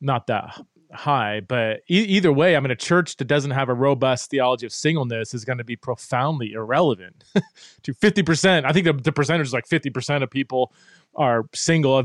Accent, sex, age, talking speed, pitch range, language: American, male, 20-39, 200 wpm, 120-155 Hz, English